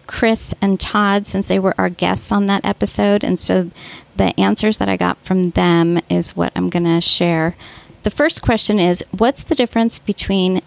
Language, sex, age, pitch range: English, female, 40-59, 155-200 Hz